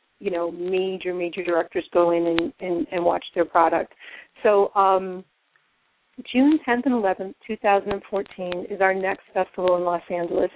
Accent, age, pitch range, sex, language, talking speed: American, 40-59, 190-235 Hz, female, English, 155 wpm